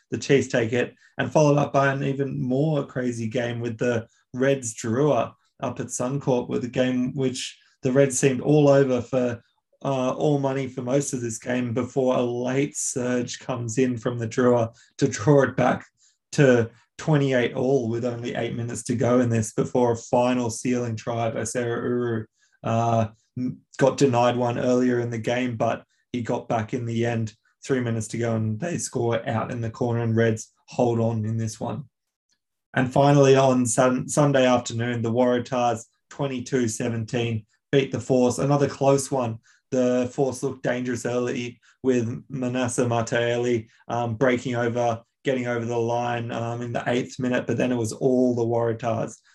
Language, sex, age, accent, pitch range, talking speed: English, male, 20-39, Australian, 120-130 Hz, 170 wpm